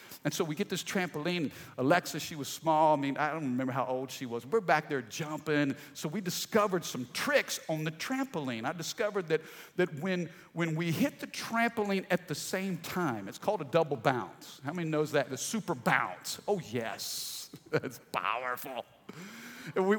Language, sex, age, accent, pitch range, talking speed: English, male, 50-69, American, 155-210 Hz, 185 wpm